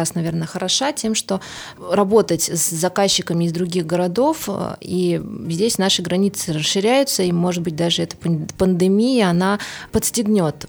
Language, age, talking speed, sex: Russian, 20-39, 130 wpm, female